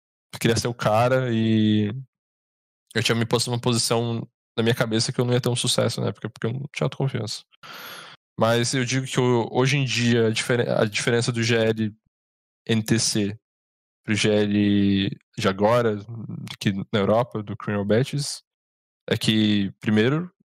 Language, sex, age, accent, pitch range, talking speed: Portuguese, male, 10-29, Brazilian, 105-120 Hz, 160 wpm